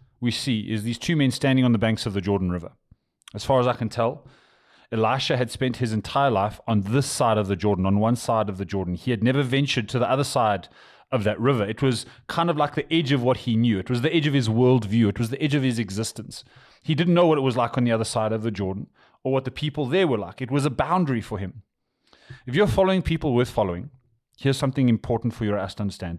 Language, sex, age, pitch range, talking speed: English, male, 30-49, 110-140 Hz, 260 wpm